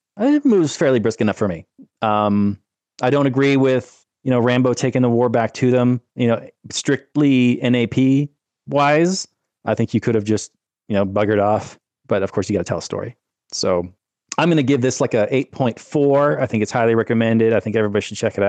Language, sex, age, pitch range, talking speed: English, male, 30-49, 100-125 Hz, 215 wpm